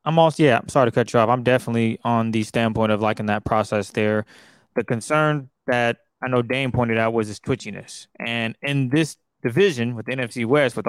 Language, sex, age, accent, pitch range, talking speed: English, male, 20-39, American, 115-135 Hz, 215 wpm